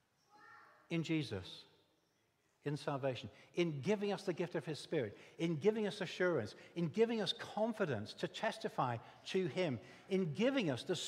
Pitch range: 125-195 Hz